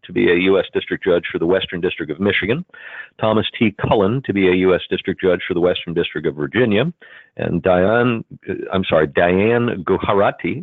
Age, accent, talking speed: 50-69, American, 185 wpm